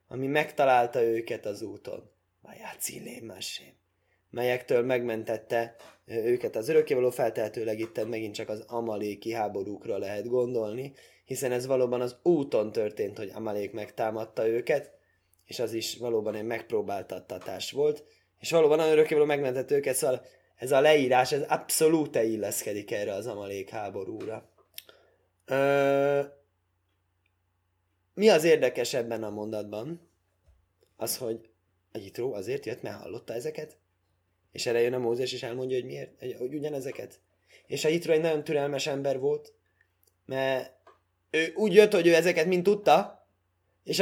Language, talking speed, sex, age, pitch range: Hungarian, 135 wpm, male, 20-39, 105-170 Hz